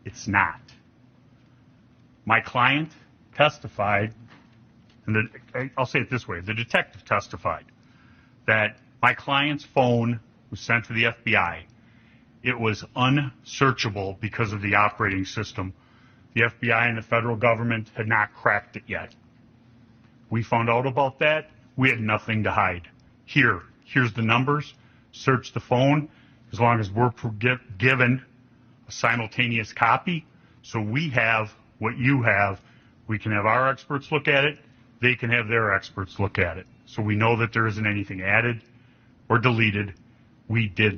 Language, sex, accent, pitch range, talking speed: English, male, American, 110-125 Hz, 145 wpm